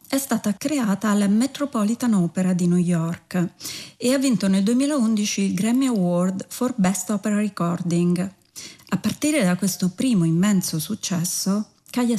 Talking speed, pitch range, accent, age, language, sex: 145 wpm, 180-220 Hz, native, 30-49, Italian, female